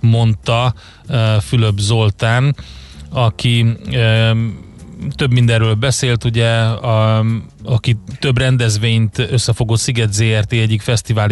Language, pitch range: Hungarian, 105-115 Hz